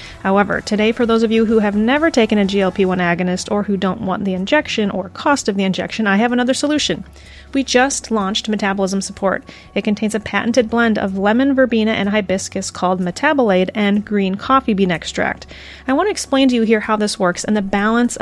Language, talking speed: English, 210 wpm